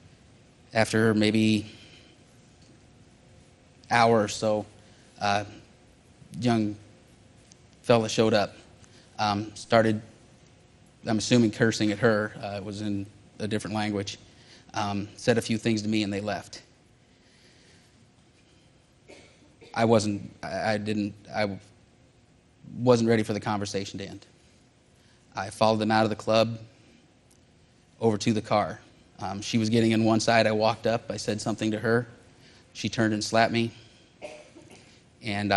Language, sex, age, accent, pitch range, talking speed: English, male, 30-49, American, 105-115 Hz, 135 wpm